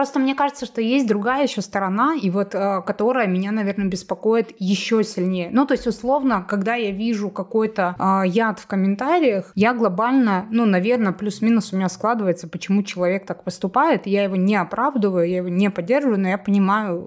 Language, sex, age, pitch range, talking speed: Russian, female, 20-39, 185-230 Hz, 175 wpm